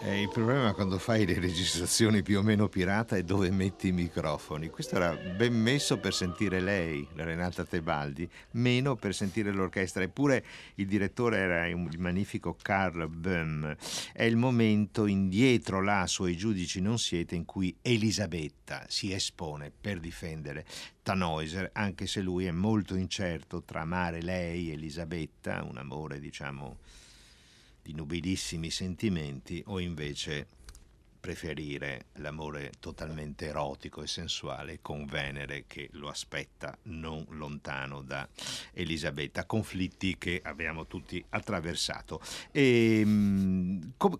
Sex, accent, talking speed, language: male, native, 130 wpm, Italian